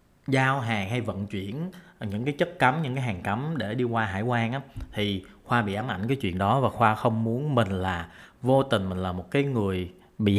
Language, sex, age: Vietnamese, male, 20-39